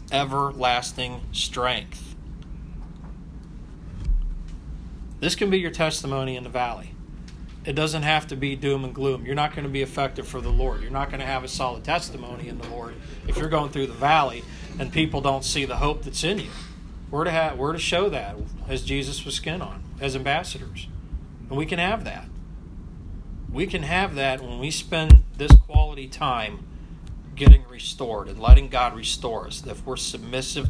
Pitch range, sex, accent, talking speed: 95-150 Hz, male, American, 175 wpm